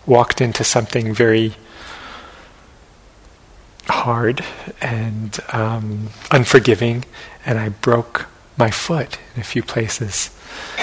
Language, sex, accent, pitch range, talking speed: English, male, American, 110-135 Hz, 95 wpm